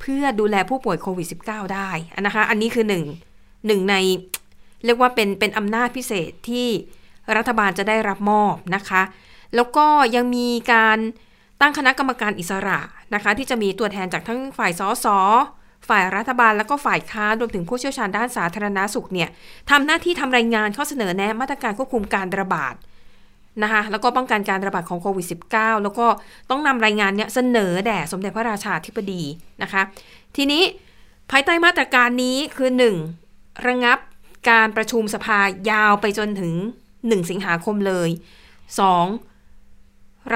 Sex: female